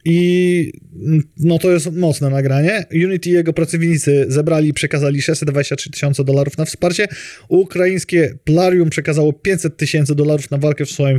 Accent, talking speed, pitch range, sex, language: native, 150 wpm, 140-170 Hz, male, Polish